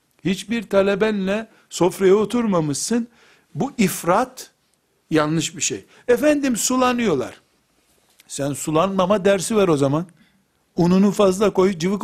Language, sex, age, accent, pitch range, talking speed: Turkish, male, 60-79, native, 150-205 Hz, 105 wpm